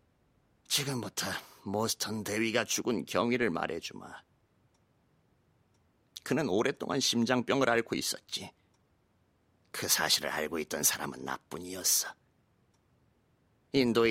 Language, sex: Korean, male